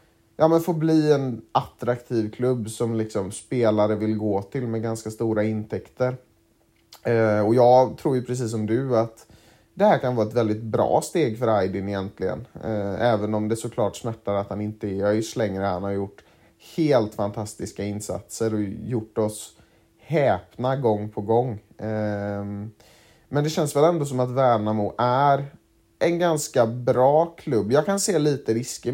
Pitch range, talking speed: 105-125 Hz, 165 wpm